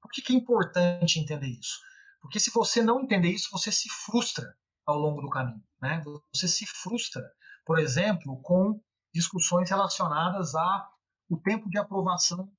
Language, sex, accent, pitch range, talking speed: Portuguese, male, Brazilian, 160-205 Hz, 155 wpm